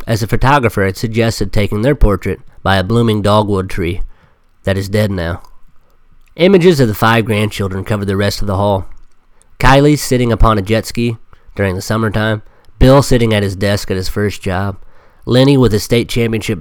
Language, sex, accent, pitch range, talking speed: English, male, American, 95-120 Hz, 185 wpm